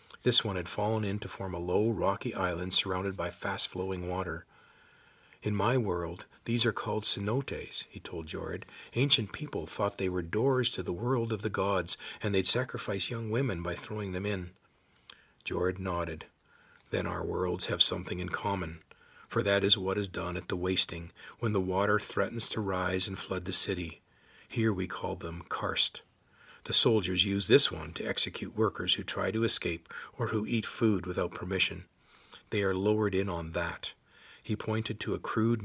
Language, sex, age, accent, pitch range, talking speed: English, male, 40-59, American, 95-115 Hz, 180 wpm